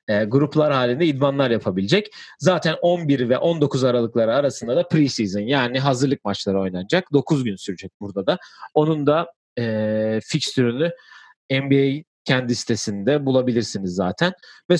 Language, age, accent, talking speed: Turkish, 40-59, native, 130 wpm